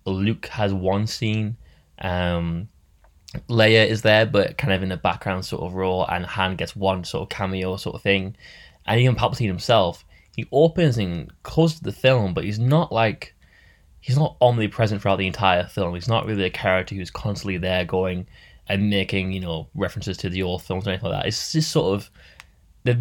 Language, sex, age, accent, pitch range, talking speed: English, male, 10-29, British, 90-115 Hz, 195 wpm